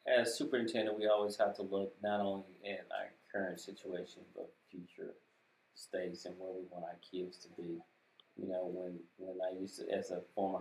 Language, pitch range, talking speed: English, 90-100 Hz, 190 wpm